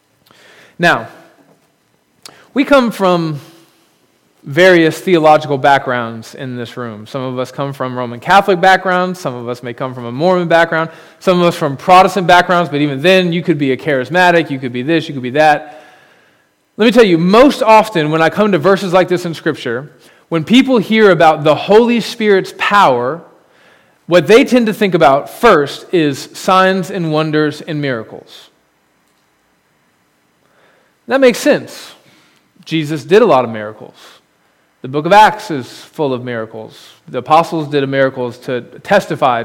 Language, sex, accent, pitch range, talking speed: English, male, American, 140-185 Hz, 165 wpm